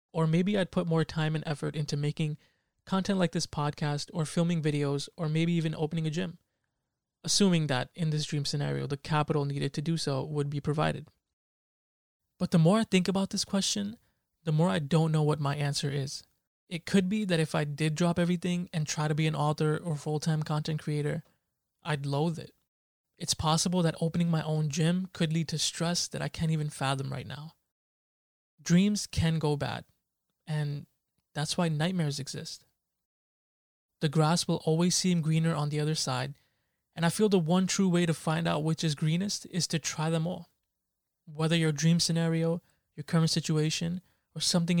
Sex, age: male, 20-39